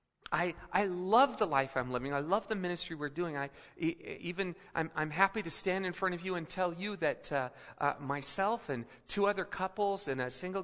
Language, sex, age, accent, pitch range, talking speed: English, male, 40-59, American, 150-200 Hz, 220 wpm